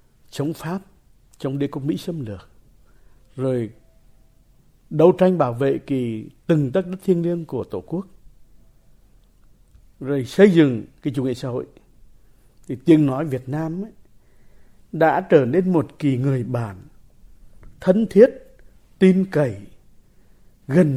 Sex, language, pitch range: male, Vietnamese, 125-165 Hz